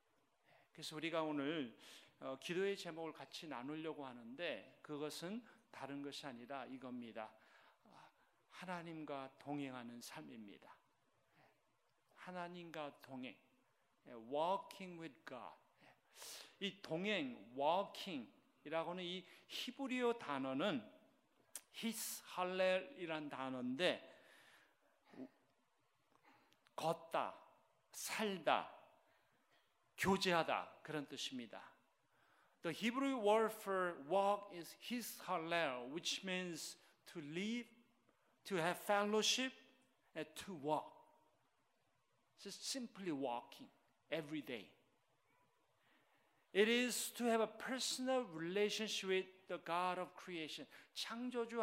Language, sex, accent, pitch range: Korean, male, native, 155-220 Hz